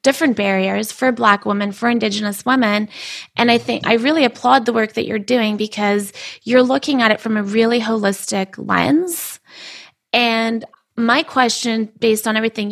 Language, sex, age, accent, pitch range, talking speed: English, female, 20-39, American, 210-235 Hz, 165 wpm